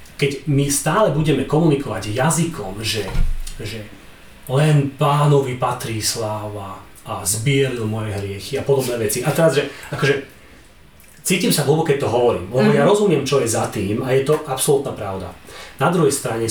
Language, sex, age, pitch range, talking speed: Slovak, male, 30-49, 110-145 Hz, 160 wpm